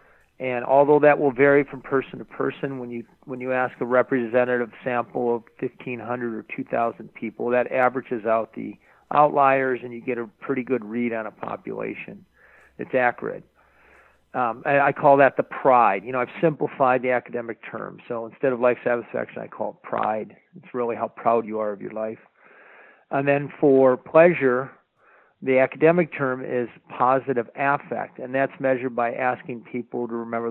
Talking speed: 175 wpm